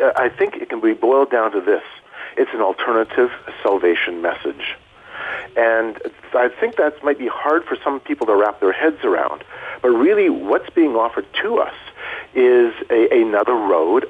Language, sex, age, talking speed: English, male, 50-69, 165 wpm